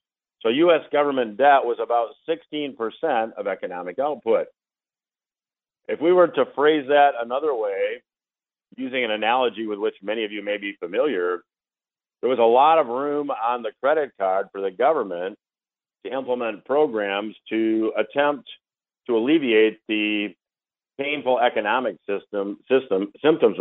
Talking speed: 140 wpm